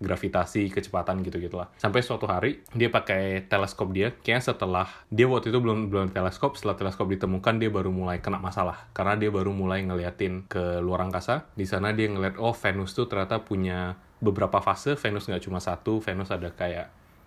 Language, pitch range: Indonesian, 90-105 Hz